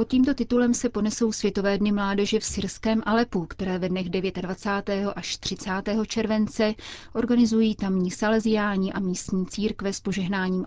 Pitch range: 185-220 Hz